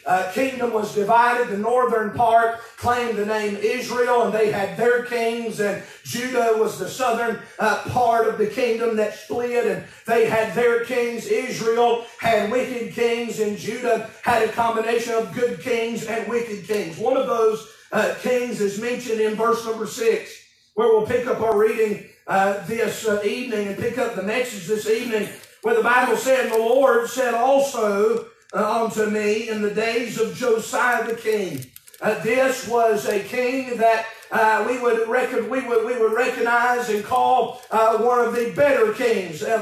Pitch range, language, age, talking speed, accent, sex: 215-245 Hz, English, 40-59, 175 wpm, American, male